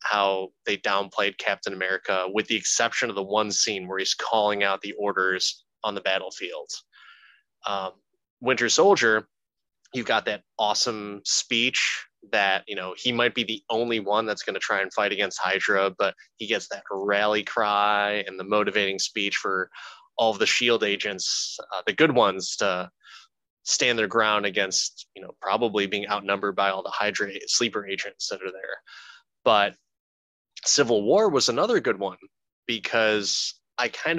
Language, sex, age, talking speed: English, male, 20-39, 165 wpm